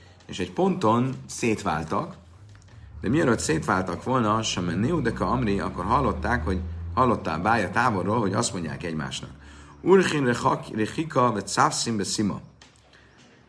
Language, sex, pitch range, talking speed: Hungarian, male, 85-115 Hz, 105 wpm